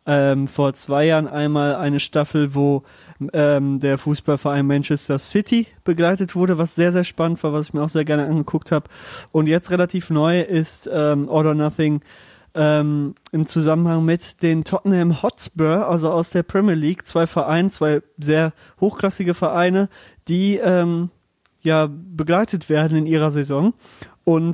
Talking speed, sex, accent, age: 155 wpm, male, German, 20-39